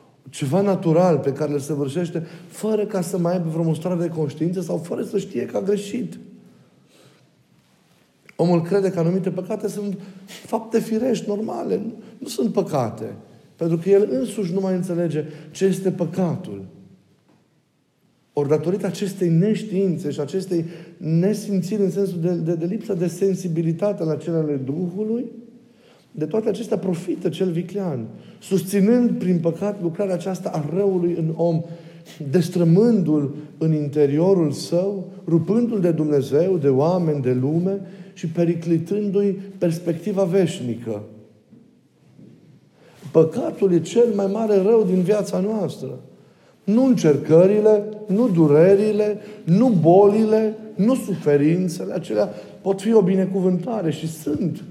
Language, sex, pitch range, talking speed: Romanian, male, 165-205 Hz, 130 wpm